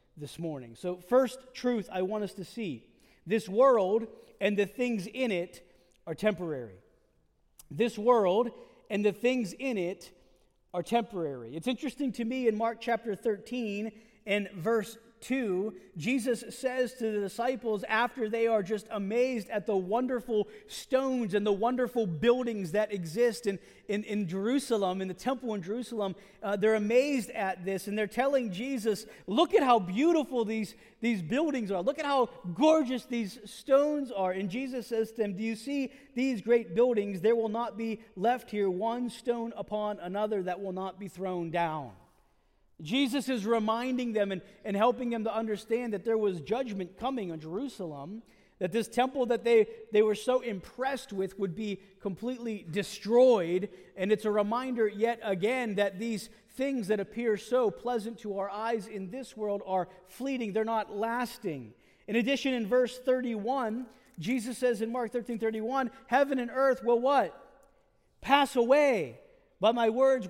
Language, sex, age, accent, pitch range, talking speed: English, male, 40-59, American, 200-245 Hz, 165 wpm